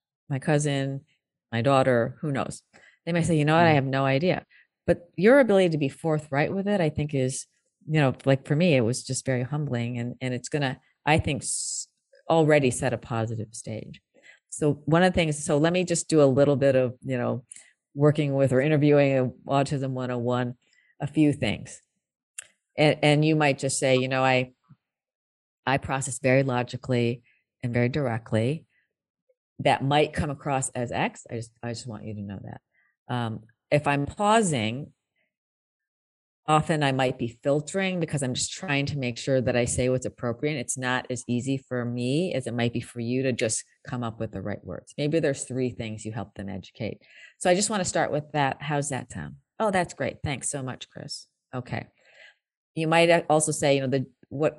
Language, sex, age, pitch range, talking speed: English, female, 40-59, 125-150 Hz, 200 wpm